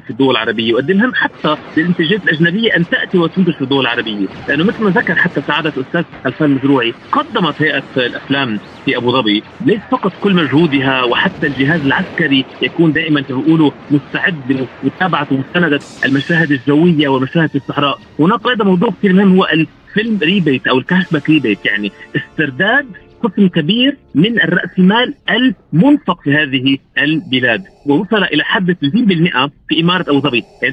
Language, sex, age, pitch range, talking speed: Arabic, male, 40-59, 145-200 Hz, 150 wpm